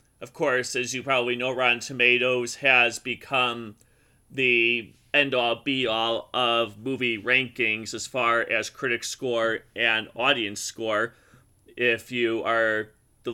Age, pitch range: 30-49, 115-135 Hz